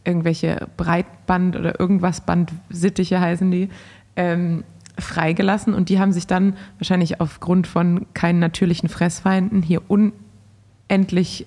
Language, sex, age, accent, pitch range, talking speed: German, female, 20-39, German, 165-190 Hz, 110 wpm